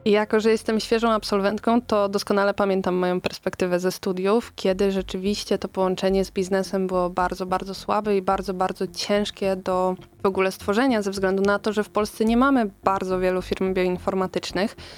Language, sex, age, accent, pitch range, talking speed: Polish, female, 20-39, native, 185-210 Hz, 170 wpm